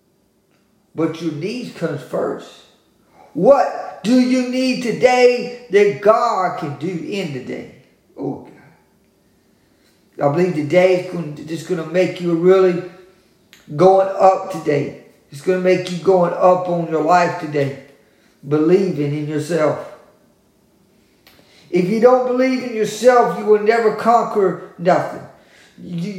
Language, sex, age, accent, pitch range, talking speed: English, male, 50-69, American, 165-220 Hz, 135 wpm